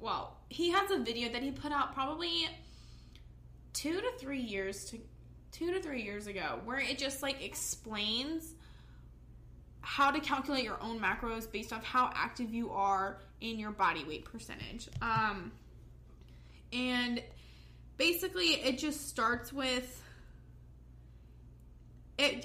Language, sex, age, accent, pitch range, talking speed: English, female, 20-39, American, 210-255 Hz, 135 wpm